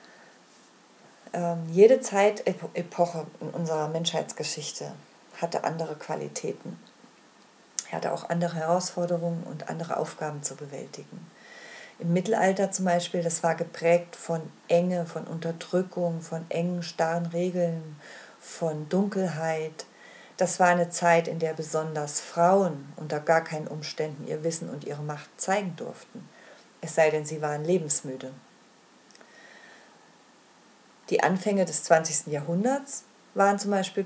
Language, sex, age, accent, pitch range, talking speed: German, female, 40-59, German, 160-190 Hz, 120 wpm